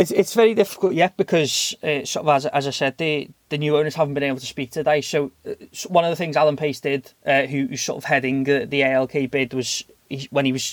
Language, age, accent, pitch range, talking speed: English, 20-39, British, 130-145 Hz, 265 wpm